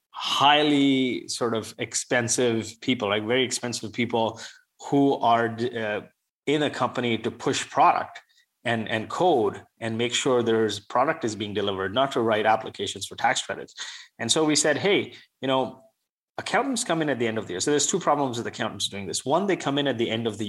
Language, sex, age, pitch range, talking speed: English, male, 30-49, 110-140 Hz, 200 wpm